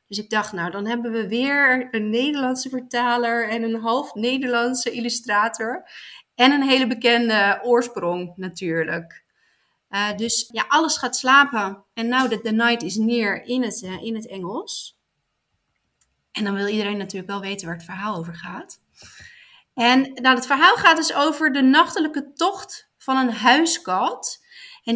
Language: Dutch